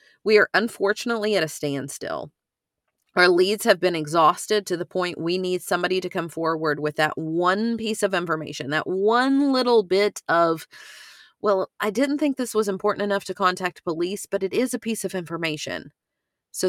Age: 30-49